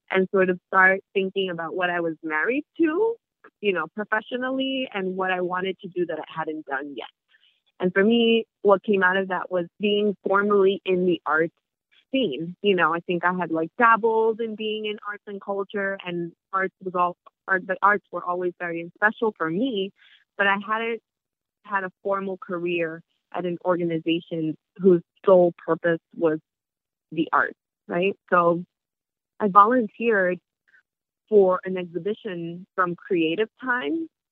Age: 20-39